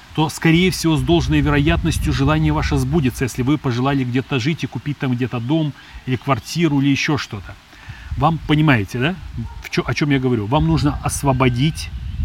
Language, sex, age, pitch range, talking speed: Russian, male, 30-49, 115-145 Hz, 170 wpm